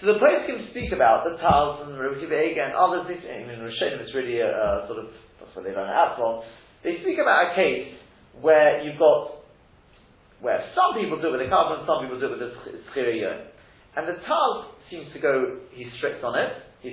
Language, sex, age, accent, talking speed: English, male, 30-49, British, 220 wpm